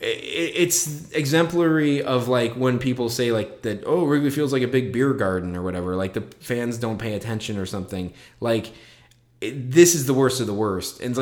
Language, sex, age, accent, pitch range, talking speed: English, male, 20-39, American, 125-190 Hz, 210 wpm